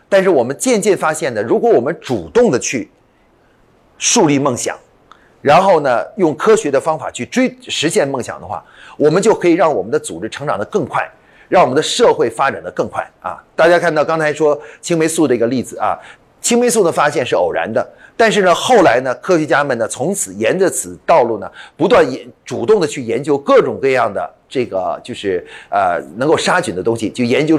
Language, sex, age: Chinese, male, 30-49